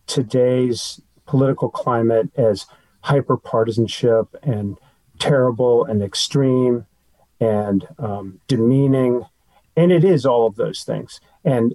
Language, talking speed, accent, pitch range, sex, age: English, 100 wpm, American, 115-145 Hz, male, 40-59